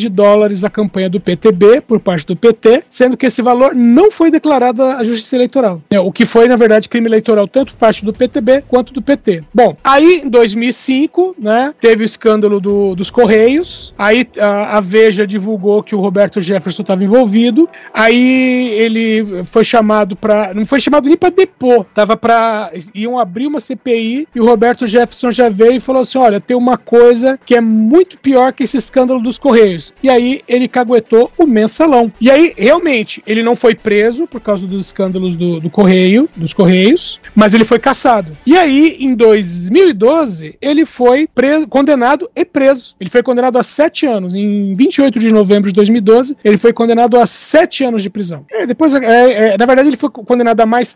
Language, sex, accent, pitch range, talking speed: Portuguese, male, Brazilian, 215-260 Hz, 190 wpm